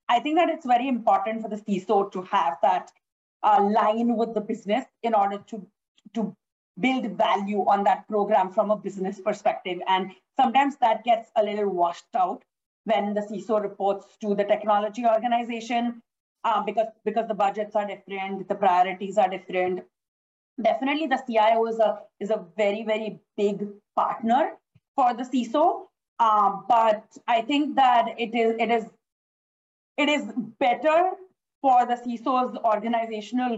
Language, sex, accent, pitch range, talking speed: English, female, Indian, 205-240 Hz, 155 wpm